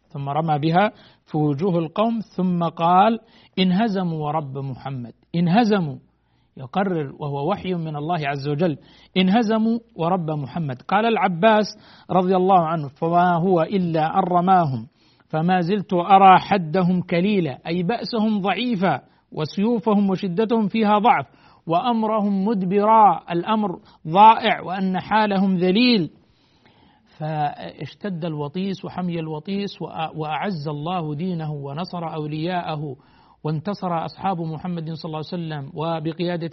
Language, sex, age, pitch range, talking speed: Arabic, male, 50-69, 155-195 Hz, 110 wpm